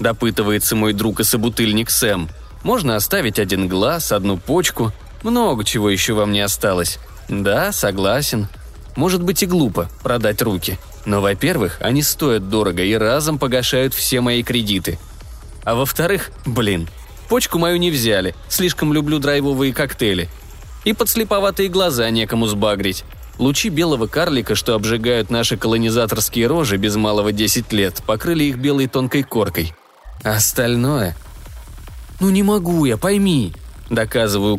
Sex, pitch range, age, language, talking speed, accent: male, 100-130 Hz, 20-39, Russian, 135 wpm, native